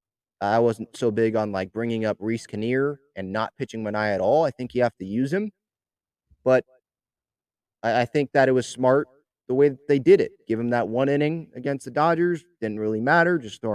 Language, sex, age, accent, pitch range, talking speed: English, male, 20-39, American, 110-150 Hz, 215 wpm